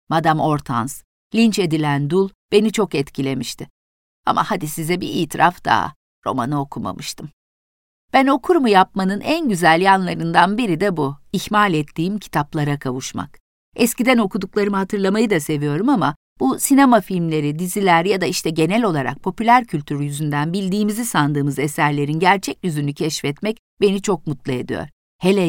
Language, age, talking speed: Turkish, 50-69, 135 wpm